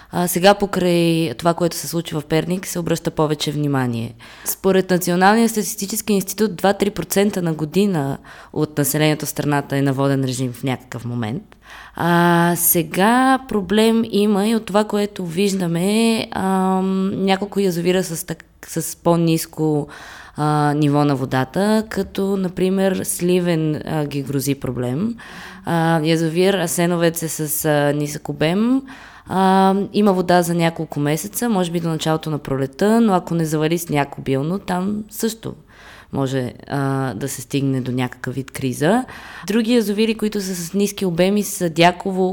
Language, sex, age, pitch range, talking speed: Bulgarian, female, 20-39, 150-195 Hz, 145 wpm